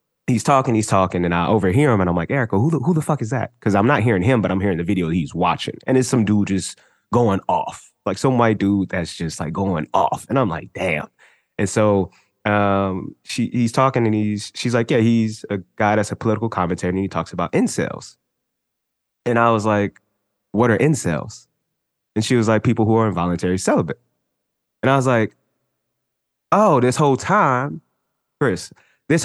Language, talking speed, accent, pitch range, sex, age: English, 205 wpm, American, 95-125 Hz, male, 20-39